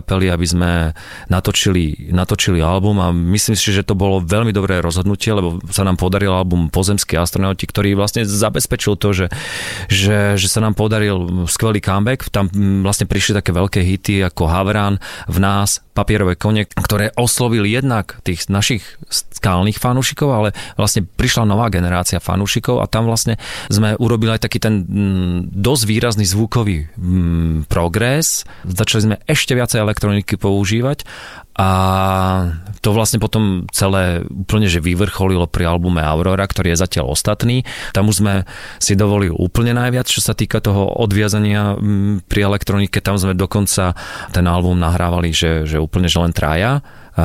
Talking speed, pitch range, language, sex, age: 150 wpm, 90-105 Hz, Slovak, male, 40-59